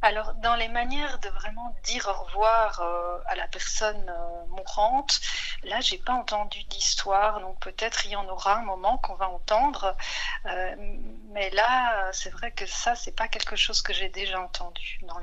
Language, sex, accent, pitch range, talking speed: French, female, French, 180-225 Hz, 185 wpm